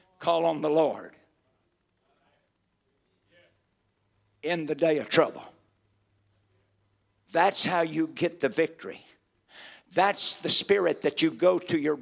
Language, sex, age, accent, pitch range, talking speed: English, male, 60-79, American, 110-170 Hz, 115 wpm